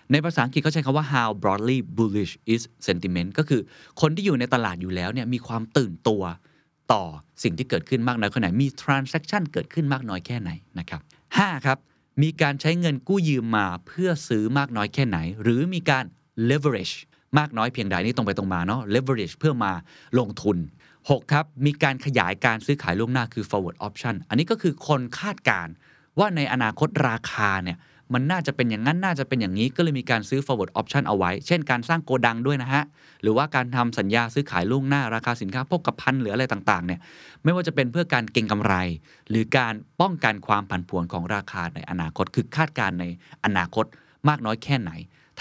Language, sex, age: Thai, male, 20-39